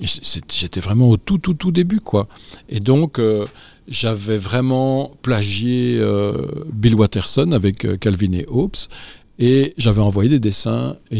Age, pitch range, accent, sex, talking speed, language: 50-69, 100-130 Hz, French, male, 150 wpm, French